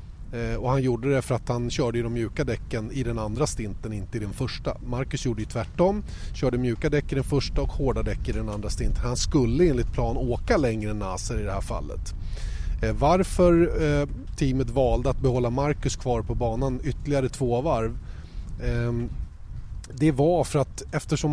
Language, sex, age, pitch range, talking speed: Swedish, male, 30-49, 110-140 Hz, 185 wpm